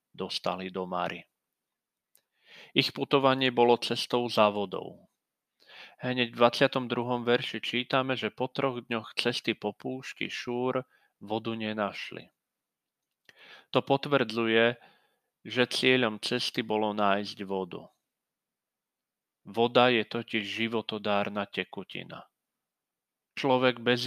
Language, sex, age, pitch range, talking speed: Slovak, male, 40-59, 105-125 Hz, 95 wpm